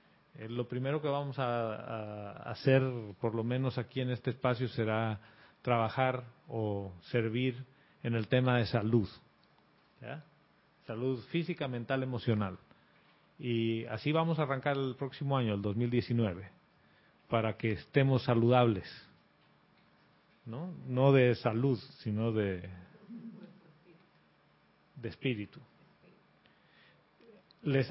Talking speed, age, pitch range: 110 wpm, 40-59, 115-145 Hz